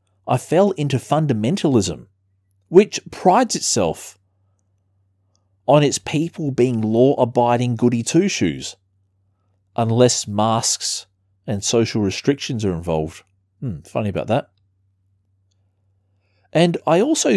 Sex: male